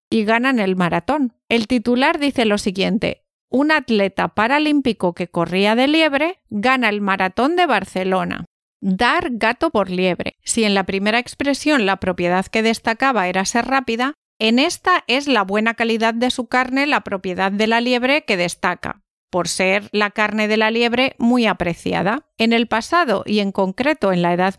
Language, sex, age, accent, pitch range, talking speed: Spanish, female, 40-59, Spanish, 200-270 Hz, 175 wpm